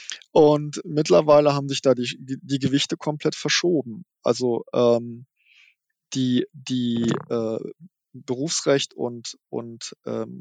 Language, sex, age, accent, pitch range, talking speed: German, male, 20-39, German, 125-145 Hz, 110 wpm